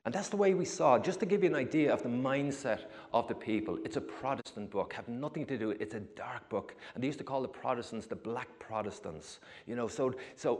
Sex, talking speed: male, 250 wpm